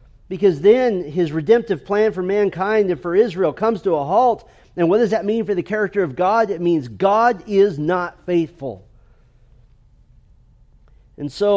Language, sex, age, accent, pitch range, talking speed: English, male, 40-59, American, 150-200 Hz, 165 wpm